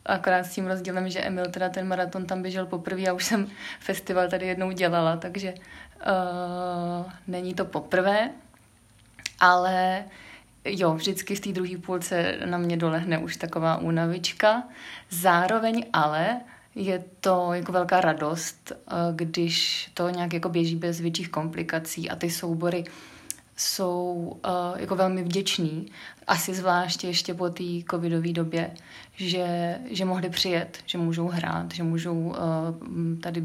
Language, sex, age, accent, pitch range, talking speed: Czech, female, 20-39, native, 170-185 Hz, 140 wpm